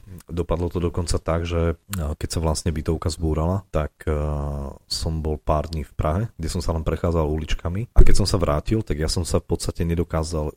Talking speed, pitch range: 200 wpm, 75-85 Hz